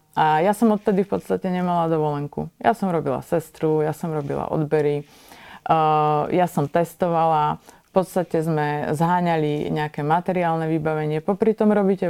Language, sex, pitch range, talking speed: Slovak, female, 155-190 Hz, 145 wpm